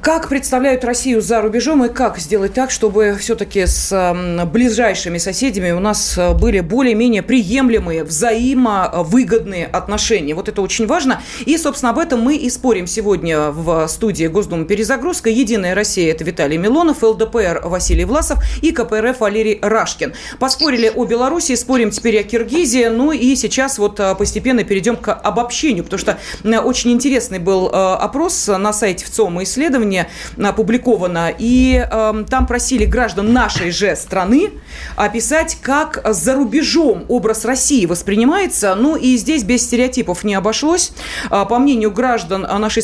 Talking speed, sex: 145 wpm, female